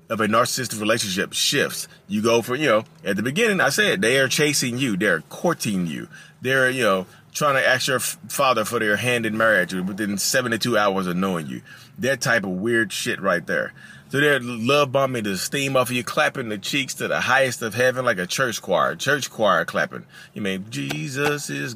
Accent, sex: American, male